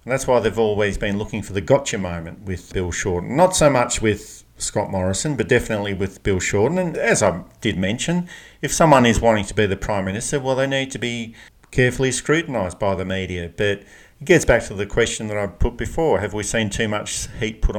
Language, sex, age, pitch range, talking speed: English, male, 50-69, 100-130 Hz, 225 wpm